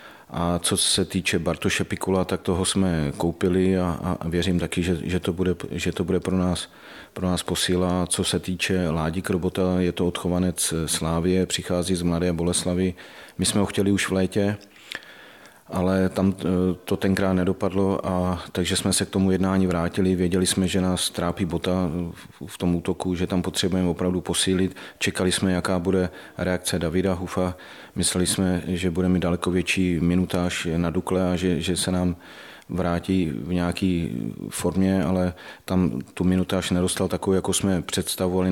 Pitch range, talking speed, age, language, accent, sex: 90-95 Hz, 170 wpm, 40-59, Czech, native, male